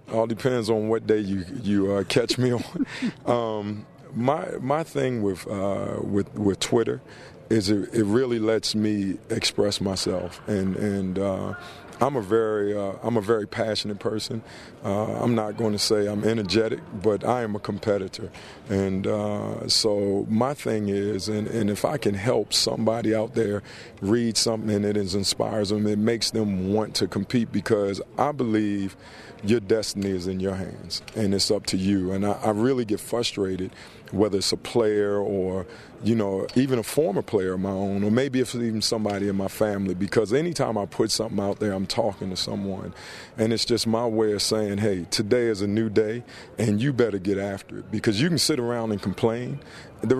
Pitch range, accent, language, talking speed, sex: 100-115 Hz, American, English, 190 wpm, male